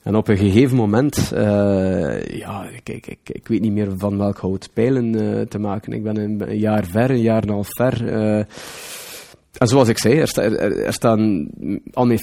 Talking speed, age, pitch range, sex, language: 220 wpm, 30-49, 100-115 Hz, male, Dutch